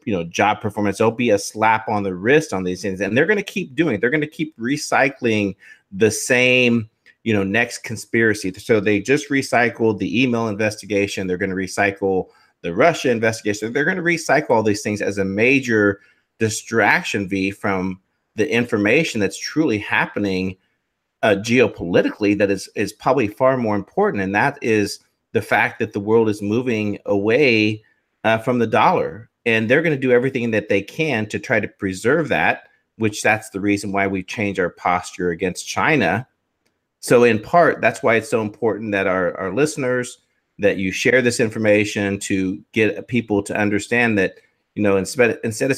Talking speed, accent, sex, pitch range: 185 wpm, American, male, 100-120 Hz